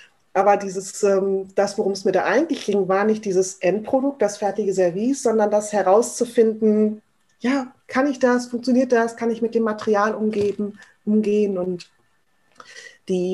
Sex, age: female, 30-49